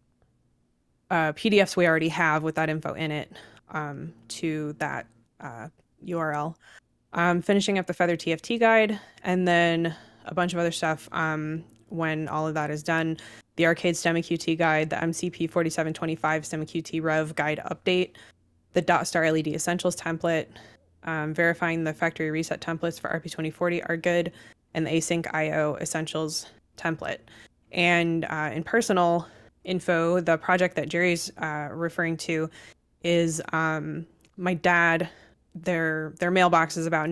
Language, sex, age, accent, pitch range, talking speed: English, female, 20-39, American, 155-170 Hz, 145 wpm